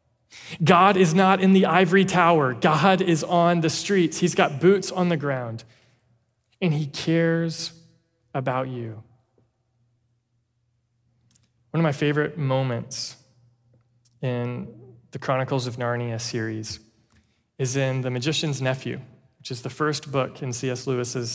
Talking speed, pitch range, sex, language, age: 130 wpm, 120-155 Hz, male, English, 20-39